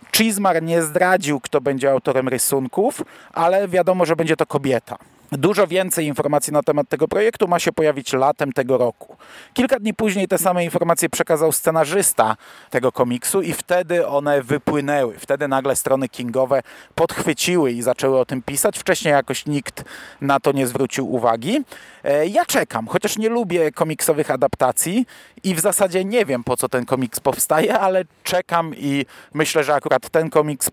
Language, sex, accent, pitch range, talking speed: Polish, male, native, 140-180 Hz, 160 wpm